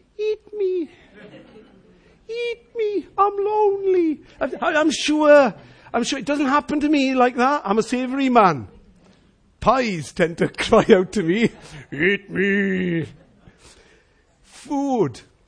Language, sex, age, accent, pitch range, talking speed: English, male, 50-69, British, 155-250 Hz, 120 wpm